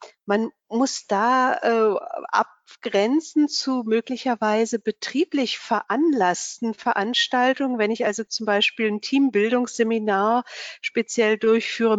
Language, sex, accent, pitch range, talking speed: German, female, German, 200-245 Hz, 95 wpm